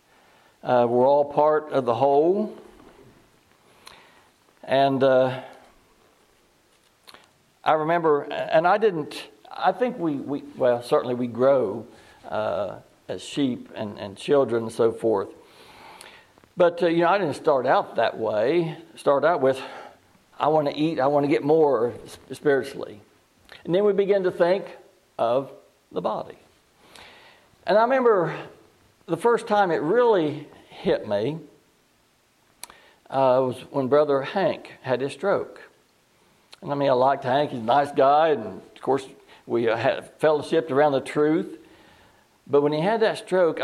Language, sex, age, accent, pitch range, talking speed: English, male, 60-79, American, 135-185 Hz, 145 wpm